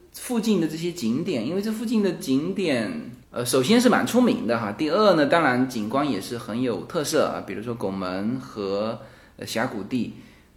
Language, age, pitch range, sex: Chinese, 20-39, 130-215 Hz, male